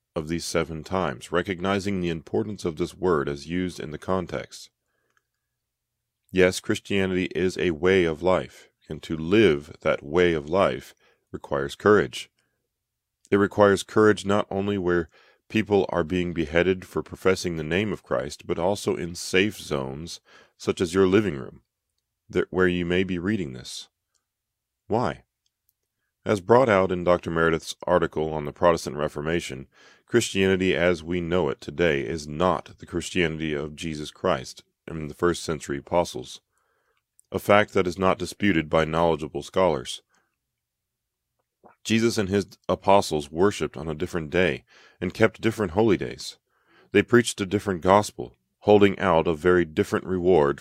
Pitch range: 80-95 Hz